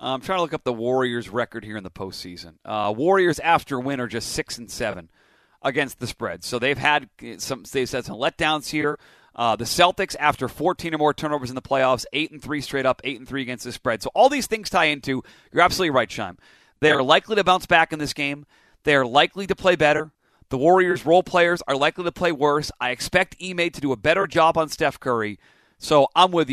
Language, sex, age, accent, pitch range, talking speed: English, male, 30-49, American, 125-155 Hz, 235 wpm